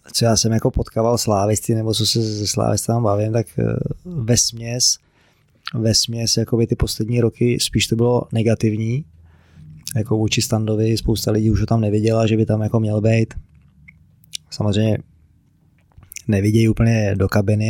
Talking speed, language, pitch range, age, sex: 150 wpm, Czech, 110-120 Hz, 20-39, male